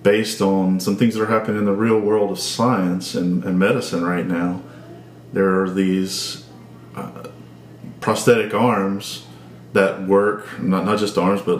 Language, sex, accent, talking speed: English, male, American, 160 wpm